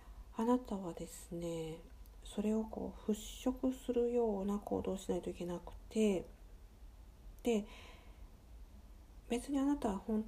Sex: female